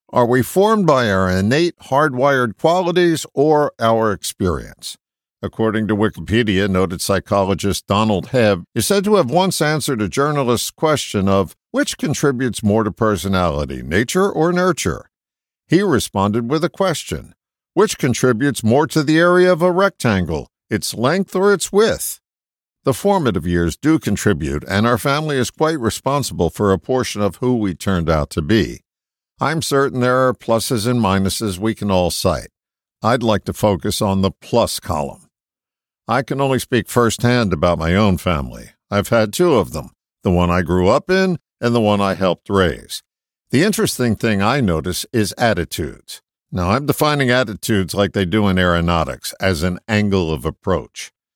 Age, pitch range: 60-79, 95-140 Hz